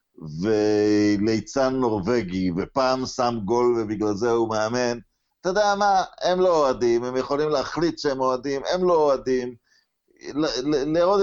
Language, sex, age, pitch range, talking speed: Hebrew, male, 50-69, 105-140 Hz, 130 wpm